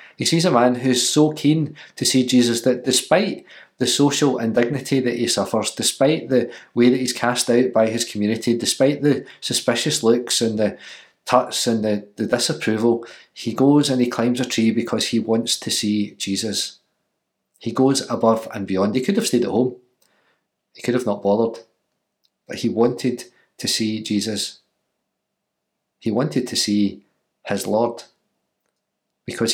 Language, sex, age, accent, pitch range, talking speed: English, male, 40-59, British, 110-130 Hz, 165 wpm